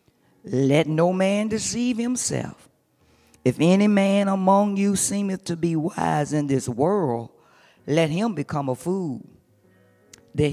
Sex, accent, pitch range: female, American, 135-185 Hz